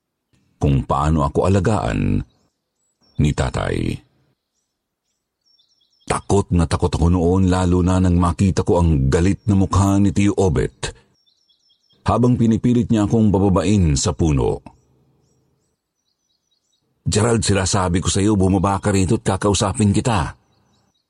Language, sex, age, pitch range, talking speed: Filipino, male, 50-69, 80-100 Hz, 115 wpm